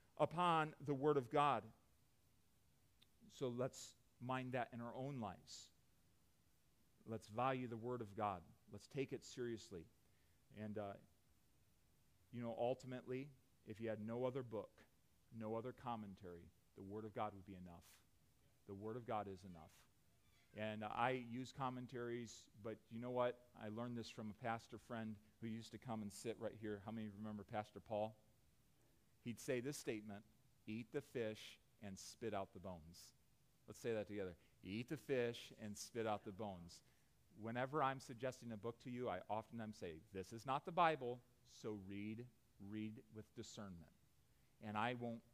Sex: male